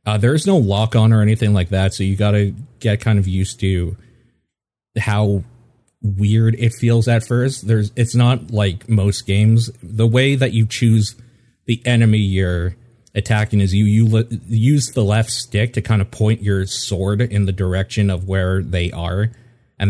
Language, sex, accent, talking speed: English, male, American, 180 wpm